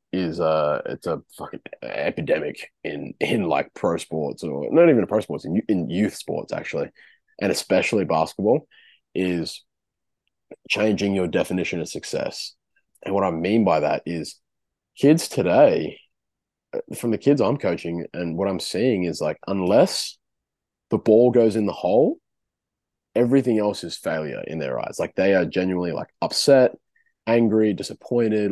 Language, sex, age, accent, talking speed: English, male, 20-39, Australian, 150 wpm